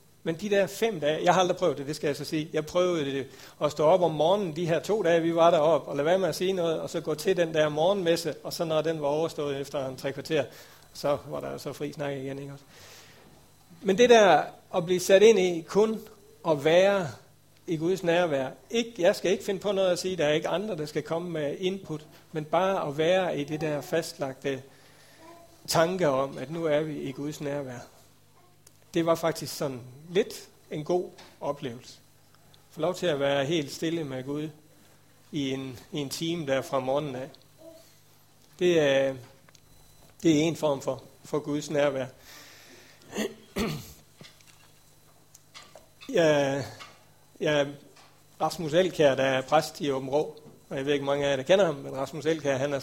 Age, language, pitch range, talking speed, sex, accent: 60-79, Danish, 140-170 Hz, 195 wpm, male, native